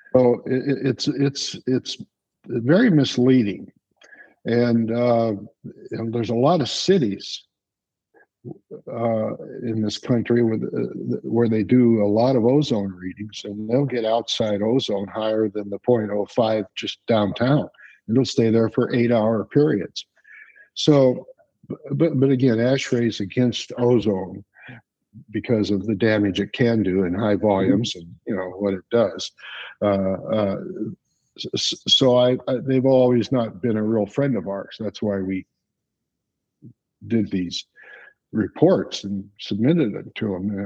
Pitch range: 100-125 Hz